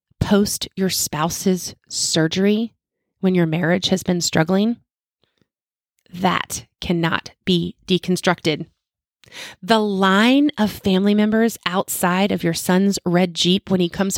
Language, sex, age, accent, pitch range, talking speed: English, female, 30-49, American, 170-210 Hz, 120 wpm